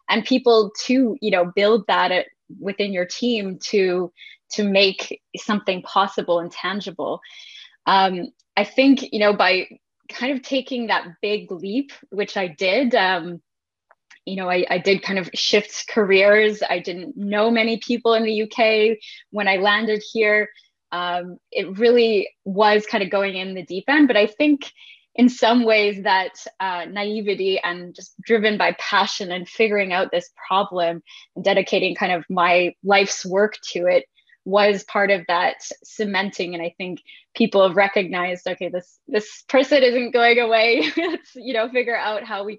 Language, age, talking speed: English, 20-39, 165 wpm